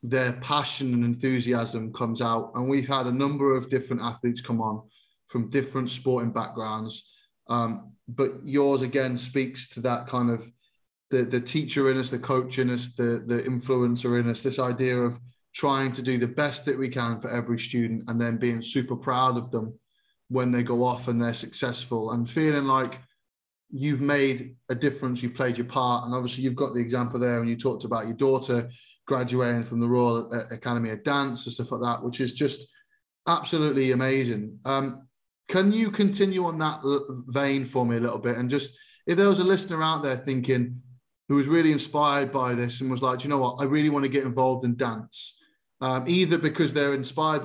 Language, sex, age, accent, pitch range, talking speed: English, male, 20-39, British, 120-140 Hz, 200 wpm